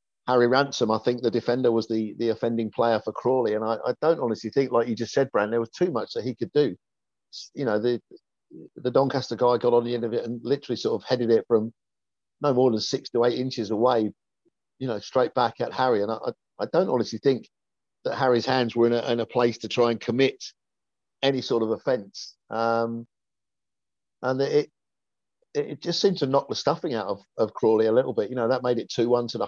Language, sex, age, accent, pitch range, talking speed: English, male, 50-69, British, 115-140 Hz, 230 wpm